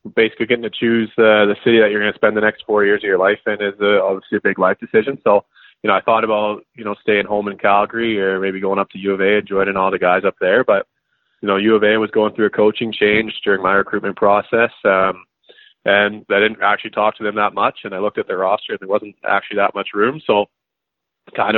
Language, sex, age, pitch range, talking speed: English, male, 20-39, 100-110 Hz, 260 wpm